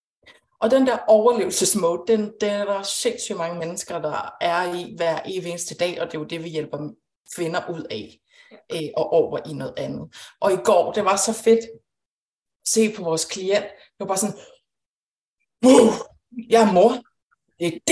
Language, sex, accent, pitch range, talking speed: Danish, female, native, 185-245 Hz, 185 wpm